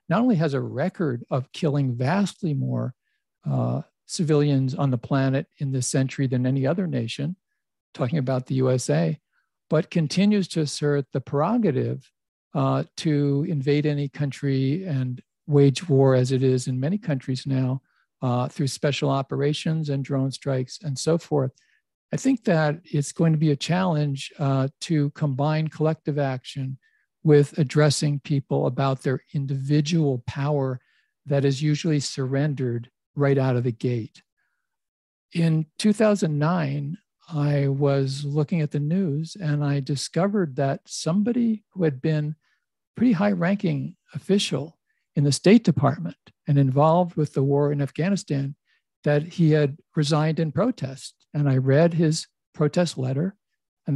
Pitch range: 135-165 Hz